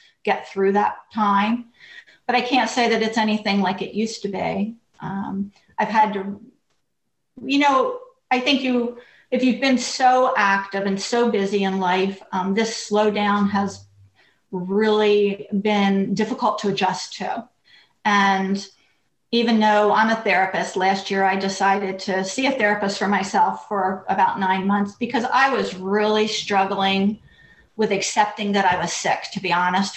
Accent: American